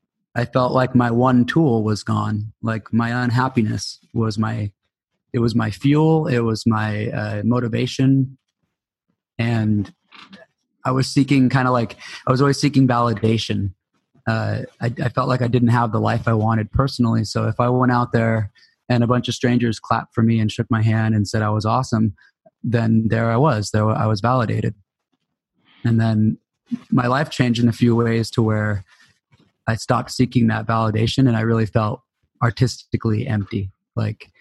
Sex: male